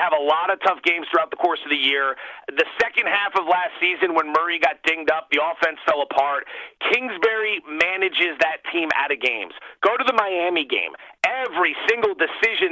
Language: English